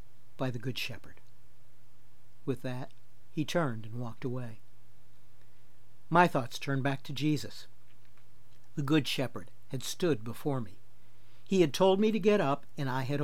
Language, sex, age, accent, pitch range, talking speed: English, male, 60-79, American, 120-150 Hz, 155 wpm